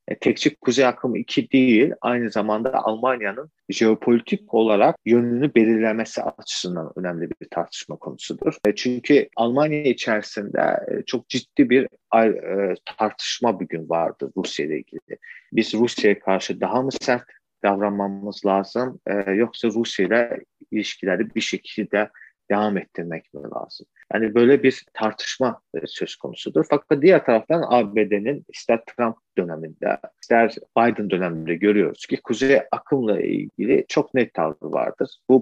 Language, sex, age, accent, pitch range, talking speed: Turkish, male, 40-59, native, 105-125 Hz, 120 wpm